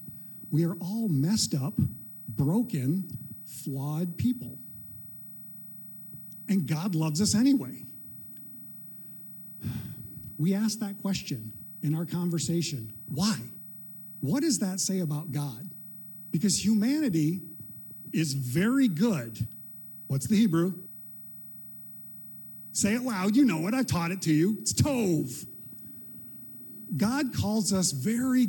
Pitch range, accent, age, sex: 165-210 Hz, American, 50-69, male